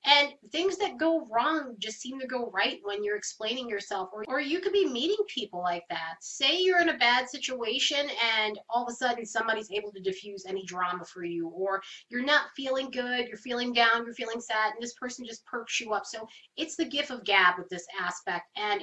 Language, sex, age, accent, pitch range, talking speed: English, female, 30-49, American, 210-270 Hz, 225 wpm